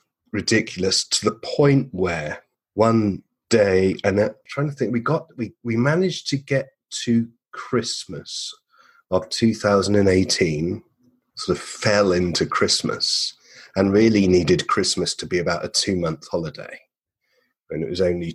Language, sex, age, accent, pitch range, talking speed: English, male, 30-49, British, 95-115 Hz, 135 wpm